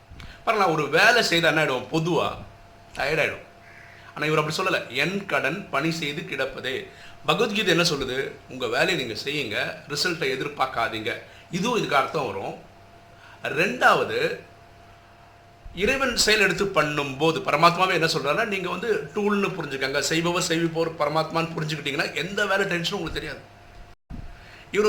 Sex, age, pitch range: male, 50-69, 130-205 Hz